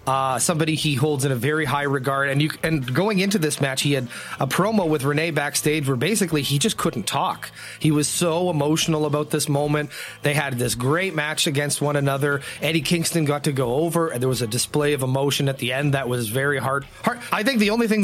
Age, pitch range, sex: 30-49, 140-175 Hz, male